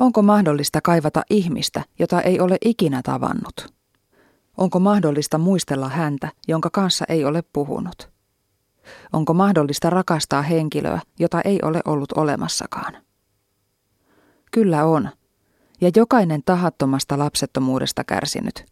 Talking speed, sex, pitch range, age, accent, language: 110 wpm, female, 135-180 Hz, 30-49, native, Finnish